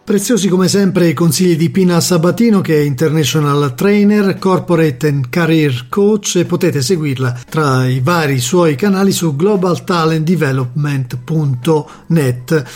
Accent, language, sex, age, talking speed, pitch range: native, Italian, male, 40-59, 130 wpm, 150-185 Hz